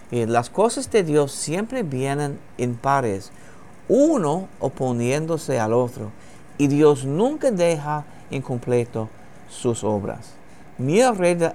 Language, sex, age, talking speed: English, male, 50-69, 110 wpm